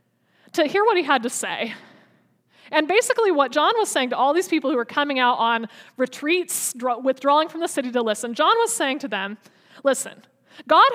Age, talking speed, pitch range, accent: 20-39, 195 wpm, 245-320 Hz, American